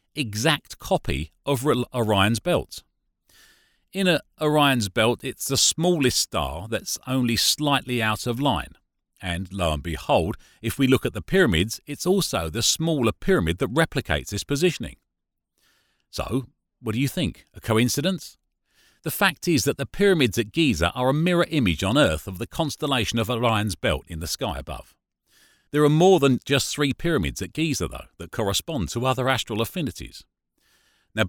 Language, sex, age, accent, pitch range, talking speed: English, male, 40-59, British, 95-145 Hz, 165 wpm